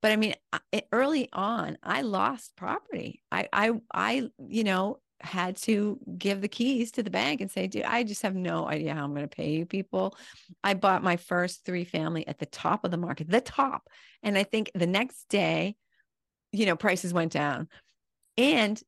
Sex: female